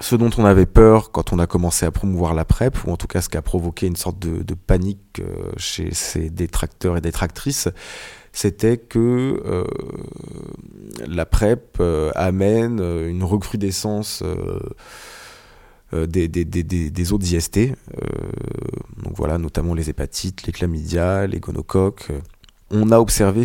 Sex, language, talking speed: male, French, 150 wpm